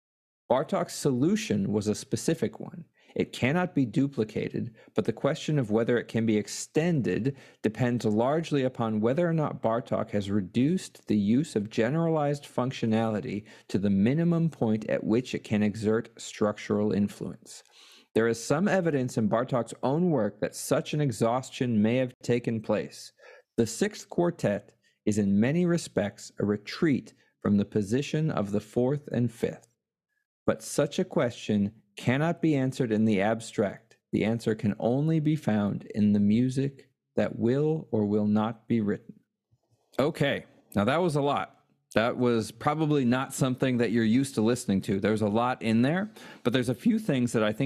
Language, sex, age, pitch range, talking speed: English, male, 40-59, 105-145 Hz, 165 wpm